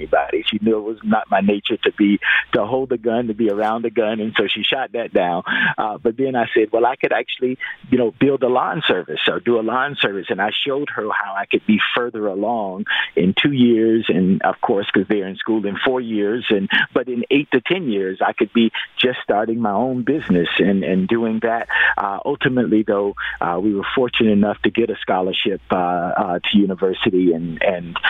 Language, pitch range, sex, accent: English, 95-115 Hz, male, American